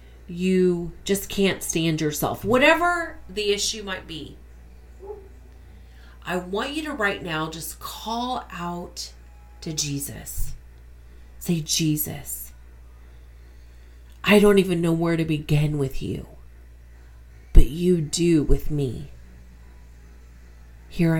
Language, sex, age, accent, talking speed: English, female, 40-59, American, 110 wpm